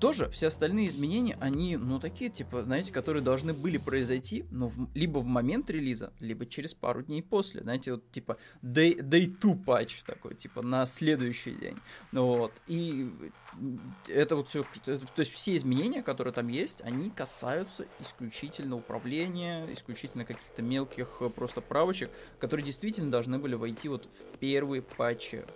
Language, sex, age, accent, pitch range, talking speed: Russian, male, 20-39, native, 120-160 Hz, 155 wpm